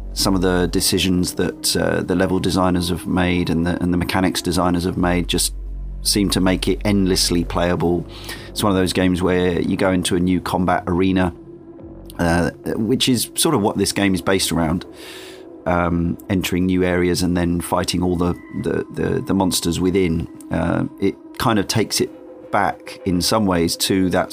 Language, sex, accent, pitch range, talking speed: English, male, British, 85-95 Hz, 185 wpm